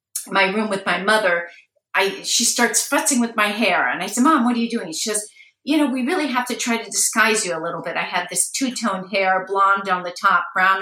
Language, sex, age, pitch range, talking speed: English, female, 50-69, 185-230 Hz, 250 wpm